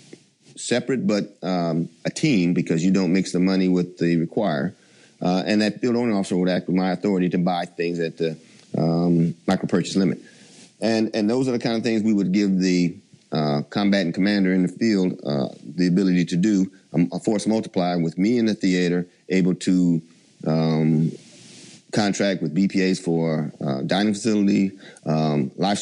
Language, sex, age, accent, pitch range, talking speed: English, male, 30-49, American, 85-100 Hz, 180 wpm